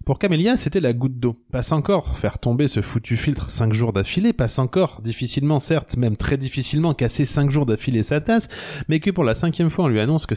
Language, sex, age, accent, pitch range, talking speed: French, male, 20-39, French, 110-150 Hz, 225 wpm